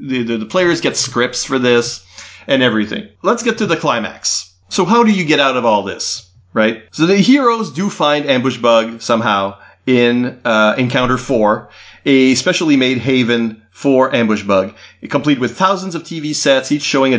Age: 30-49